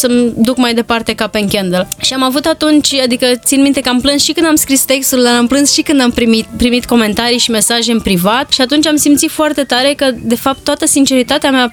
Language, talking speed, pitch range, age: Romanian, 240 wpm, 230-270 Hz, 20-39